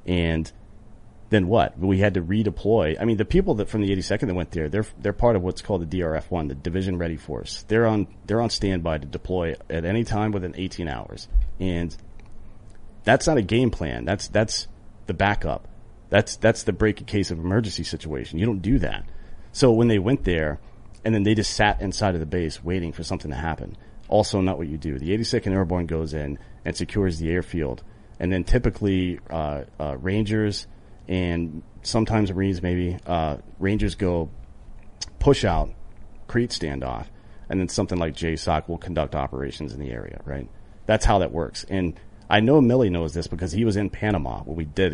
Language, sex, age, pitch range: English, male, 40-59, 80-105 Hz